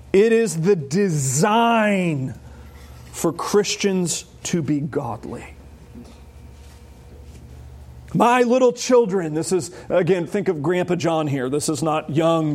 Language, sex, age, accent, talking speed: English, male, 40-59, American, 115 wpm